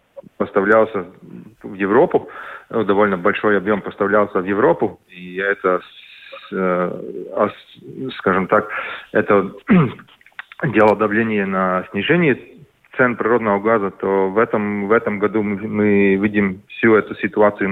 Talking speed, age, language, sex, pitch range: 105 wpm, 30-49, Russian, male, 95-105 Hz